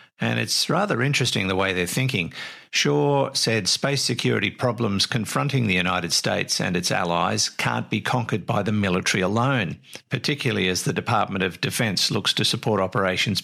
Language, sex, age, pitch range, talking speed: English, male, 50-69, 95-125 Hz, 165 wpm